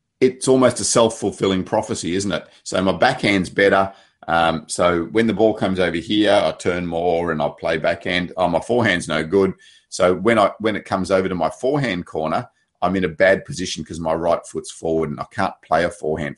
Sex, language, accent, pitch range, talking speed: male, English, Australian, 90-120 Hz, 215 wpm